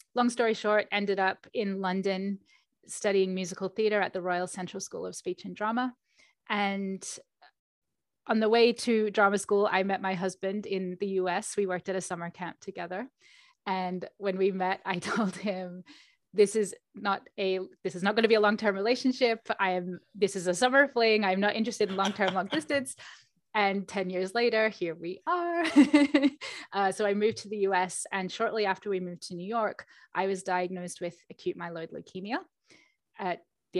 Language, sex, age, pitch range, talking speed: English, female, 20-39, 185-215 Hz, 190 wpm